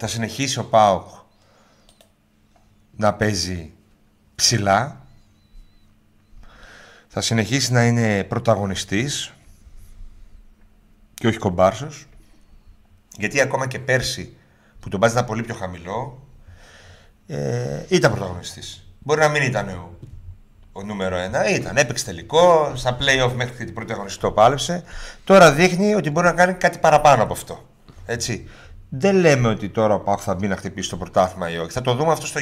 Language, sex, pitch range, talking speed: Greek, male, 95-135 Hz, 135 wpm